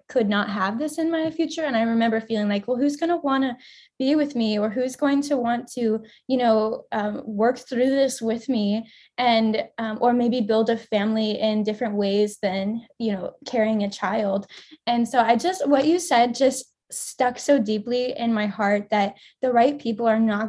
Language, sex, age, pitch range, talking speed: English, female, 10-29, 210-260 Hz, 200 wpm